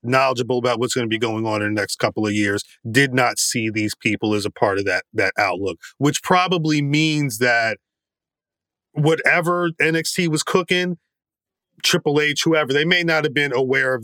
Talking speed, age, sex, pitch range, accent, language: 190 wpm, 30-49, male, 120-145 Hz, American, English